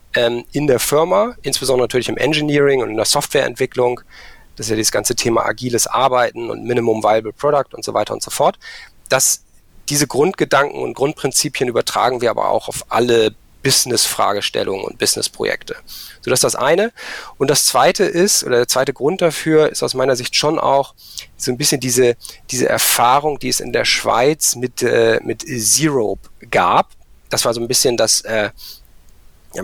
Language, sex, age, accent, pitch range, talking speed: German, male, 40-59, German, 120-145 Hz, 175 wpm